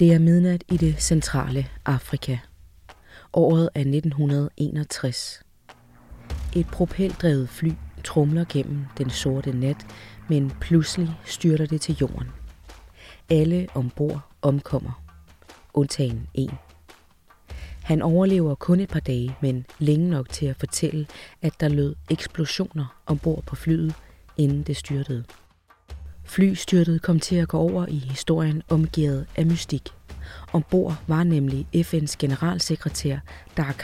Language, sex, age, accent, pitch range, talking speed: Danish, female, 30-49, native, 135-165 Hz, 120 wpm